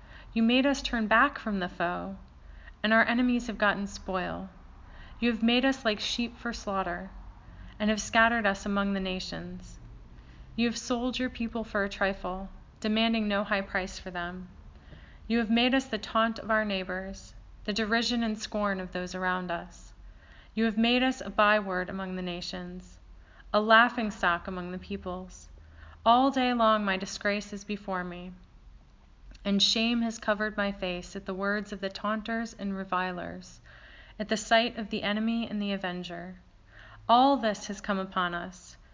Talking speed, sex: 170 wpm, female